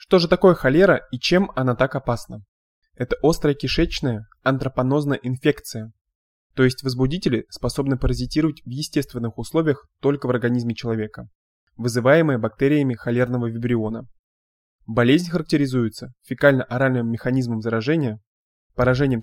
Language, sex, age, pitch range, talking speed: Russian, male, 20-39, 115-140 Hz, 110 wpm